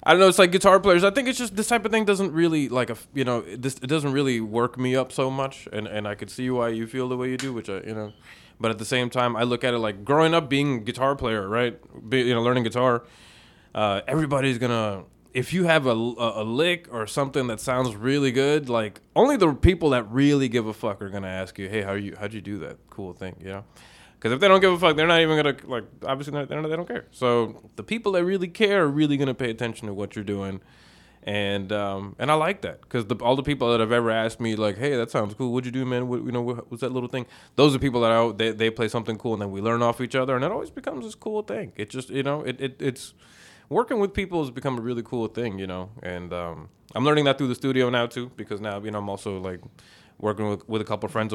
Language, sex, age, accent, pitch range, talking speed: English, male, 20-39, American, 110-140 Hz, 285 wpm